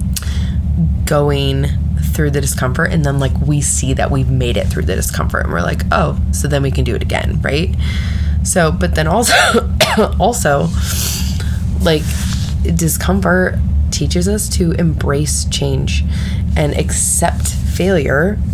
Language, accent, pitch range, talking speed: English, American, 75-90 Hz, 140 wpm